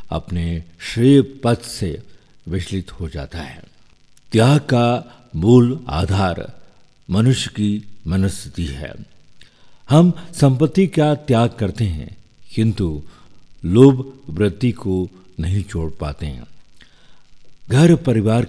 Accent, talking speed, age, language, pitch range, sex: native, 105 wpm, 60-79, Hindi, 85-115 Hz, male